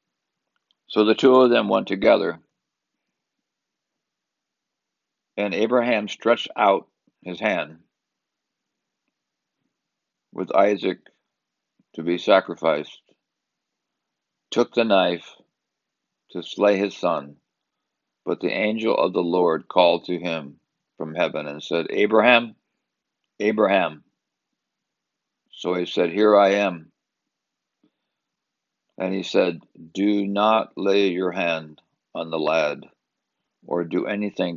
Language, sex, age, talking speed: English, male, 60-79, 105 wpm